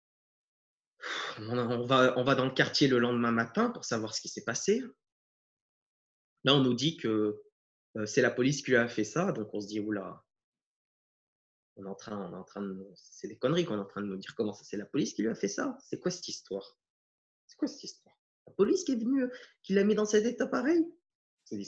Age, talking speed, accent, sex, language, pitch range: 20-39, 235 wpm, French, male, French, 110-165 Hz